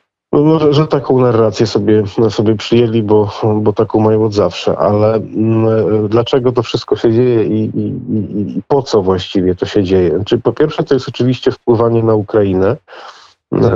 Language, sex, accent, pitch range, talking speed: Polish, male, native, 100-115 Hz, 185 wpm